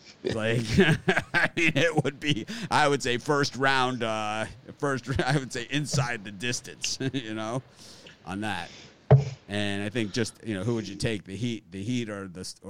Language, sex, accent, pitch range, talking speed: English, male, American, 95-130 Hz, 190 wpm